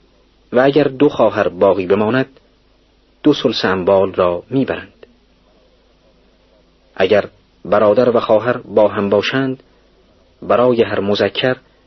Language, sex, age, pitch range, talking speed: Persian, male, 40-59, 95-125 Hz, 105 wpm